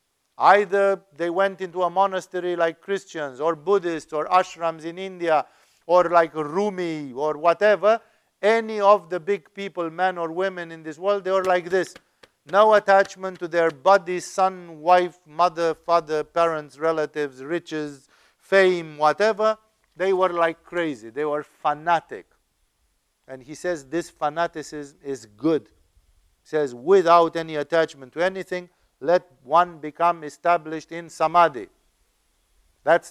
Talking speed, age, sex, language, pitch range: 140 wpm, 50-69, male, English, 150-185 Hz